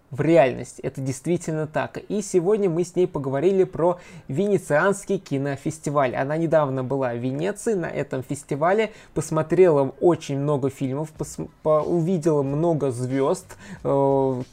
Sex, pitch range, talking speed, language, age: male, 140-175 Hz, 125 wpm, Russian, 20-39